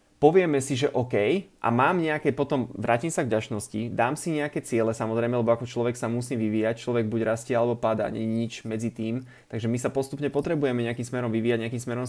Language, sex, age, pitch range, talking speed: Slovak, male, 20-39, 110-130 Hz, 215 wpm